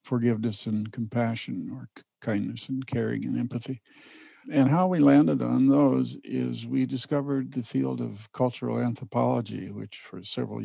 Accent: American